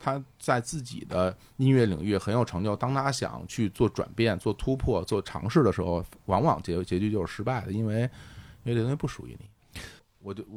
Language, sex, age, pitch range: Chinese, male, 30-49, 95-120 Hz